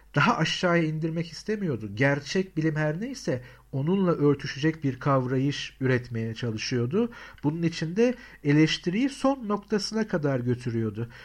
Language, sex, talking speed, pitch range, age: Turkish, male, 110 wpm, 140-180 Hz, 60-79